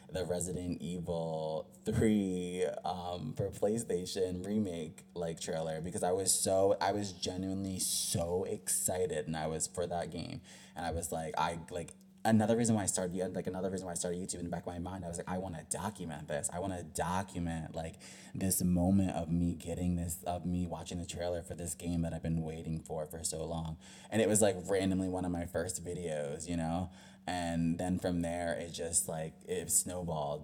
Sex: male